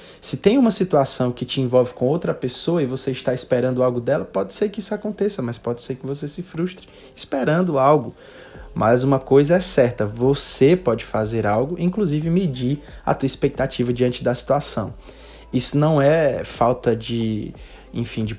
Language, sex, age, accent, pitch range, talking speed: Portuguese, male, 20-39, Brazilian, 120-155 Hz, 175 wpm